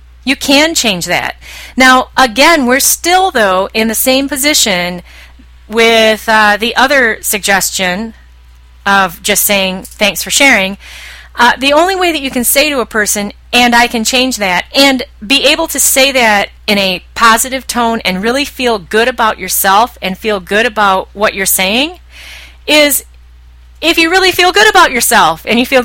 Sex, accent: female, American